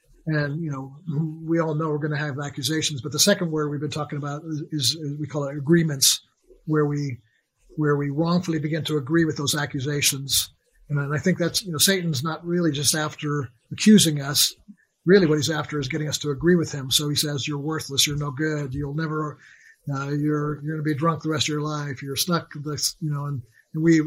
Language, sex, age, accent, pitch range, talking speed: English, male, 50-69, American, 145-160 Hz, 225 wpm